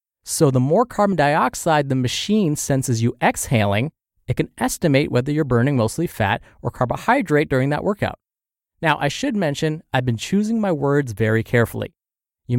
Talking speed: 165 wpm